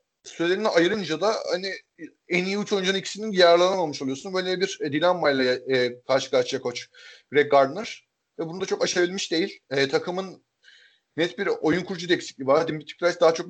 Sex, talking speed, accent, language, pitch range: male, 180 wpm, native, Turkish, 145-180 Hz